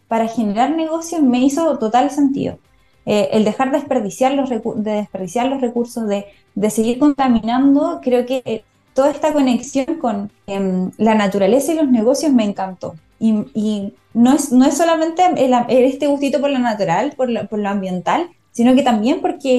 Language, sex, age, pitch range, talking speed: Spanish, female, 20-39, 215-270 Hz, 175 wpm